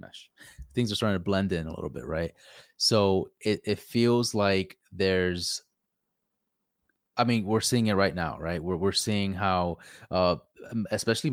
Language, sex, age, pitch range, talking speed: English, male, 20-39, 90-105 Hz, 165 wpm